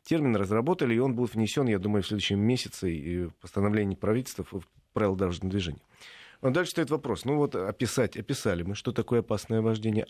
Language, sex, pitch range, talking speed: Russian, male, 100-125 Hz, 195 wpm